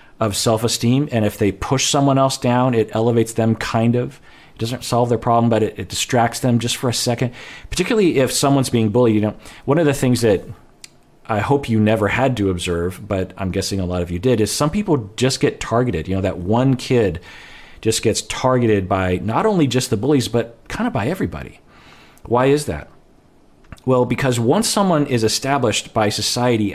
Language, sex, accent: English, male, American